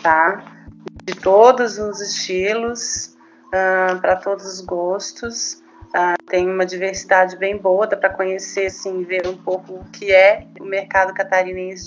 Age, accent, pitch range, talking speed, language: 30-49, Brazilian, 175-205 Hz, 145 wpm, Portuguese